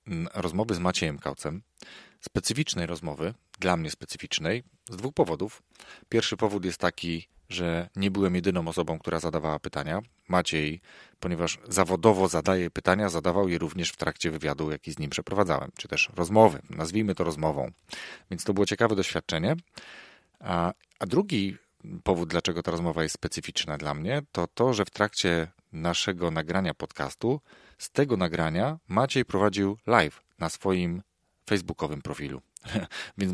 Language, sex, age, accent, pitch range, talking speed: Polish, male, 40-59, native, 85-105 Hz, 145 wpm